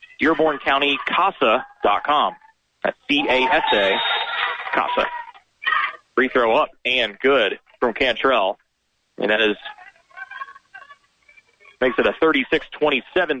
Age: 40-59